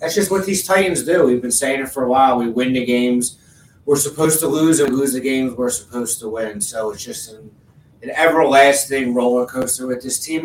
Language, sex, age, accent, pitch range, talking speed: English, male, 30-49, American, 125-155 Hz, 230 wpm